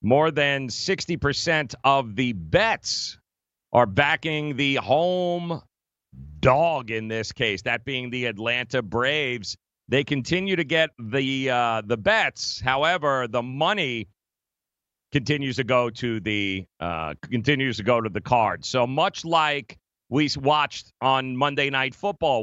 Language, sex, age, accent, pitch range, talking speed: English, male, 40-59, American, 120-160 Hz, 135 wpm